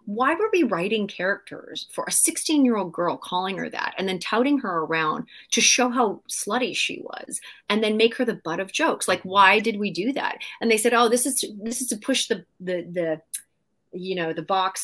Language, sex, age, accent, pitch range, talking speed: English, female, 30-49, American, 170-245 Hz, 230 wpm